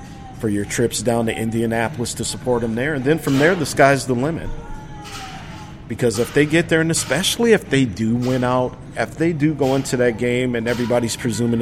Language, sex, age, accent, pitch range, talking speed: English, male, 50-69, American, 115-145 Hz, 205 wpm